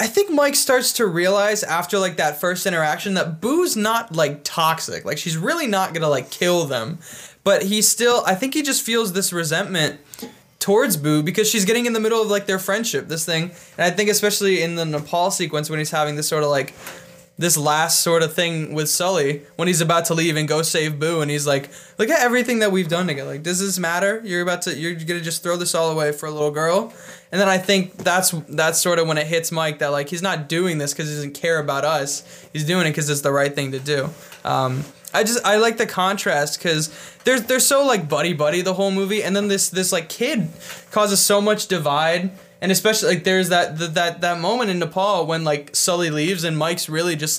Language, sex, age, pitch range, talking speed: English, male, 20-39, 155-200 Hz, 235 wpm